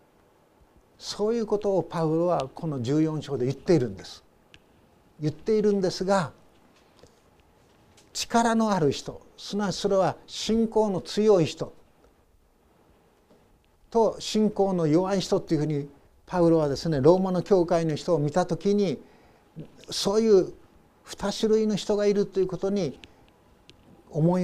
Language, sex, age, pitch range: Japanese, male, 60-79, 150-205 Hz